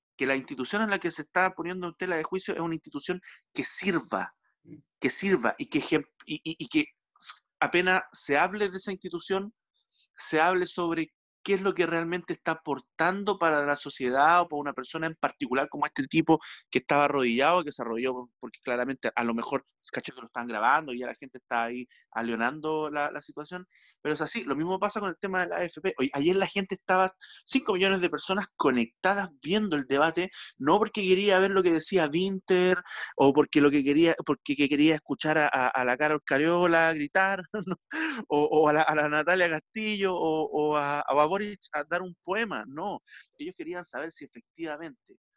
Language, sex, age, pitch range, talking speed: Spanish, male, 30-49, 145-190 Hz, 195 wpm